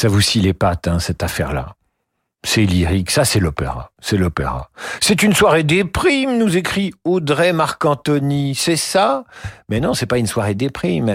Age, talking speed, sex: 50-69, 180 wpm, male